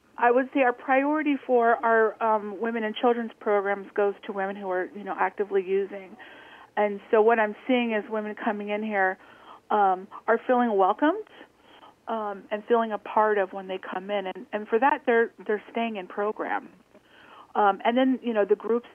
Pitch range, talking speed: 205-235 Hz, 195 wpm